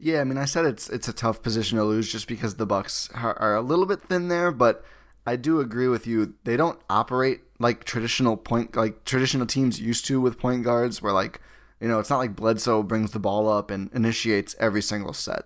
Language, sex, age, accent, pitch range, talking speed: English, male, 20-39, American, 105-125 Hz, 235 wpm